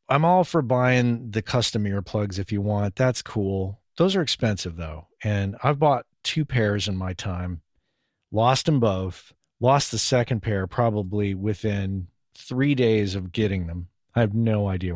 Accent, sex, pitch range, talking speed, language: American, male, 95-120 Hz, 170 wpm, English